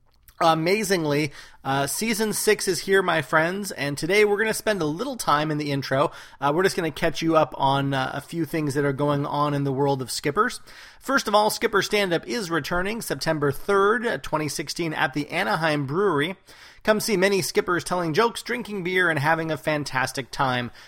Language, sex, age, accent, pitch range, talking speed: English, male, 30-49, American, 145-200 Hz, 200 wpm